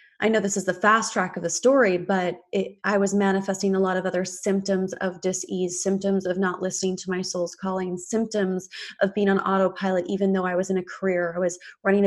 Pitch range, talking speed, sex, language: 180-200 Hz, 225 wpm, female, English